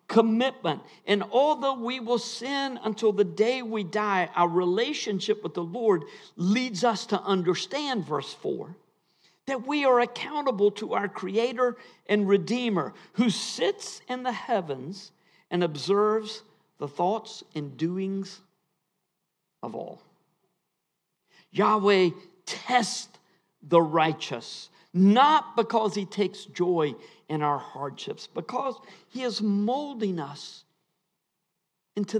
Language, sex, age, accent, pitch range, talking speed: English, male, 50-69, American, 180-230 Hz, 115 wpm